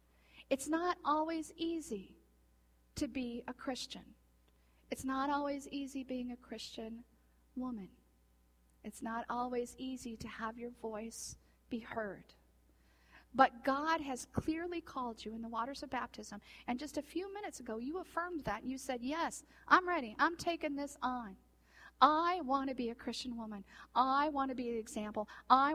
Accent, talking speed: American, 160 wpm